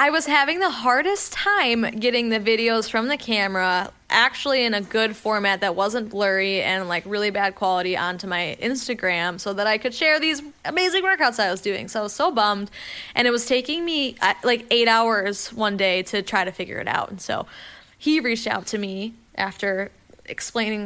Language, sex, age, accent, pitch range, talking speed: English, female, 10-29, American, 210-270 Hz, 200 wpm